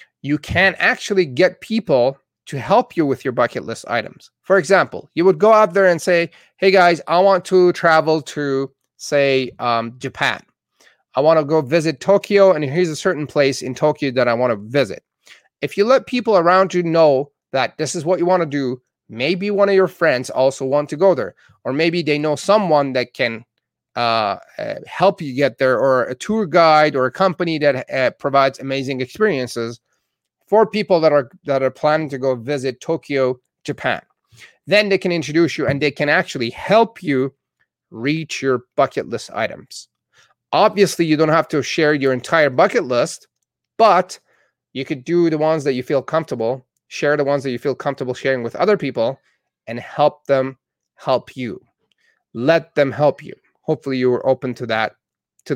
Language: English